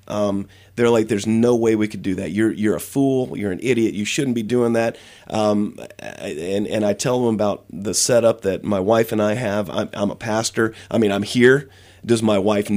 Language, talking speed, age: English, 225 wpm, 30-49